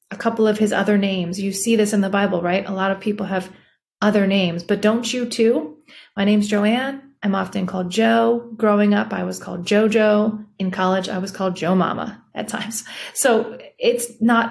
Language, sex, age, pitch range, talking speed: English, female, 30-49, 185-220 Hz, 205 wpm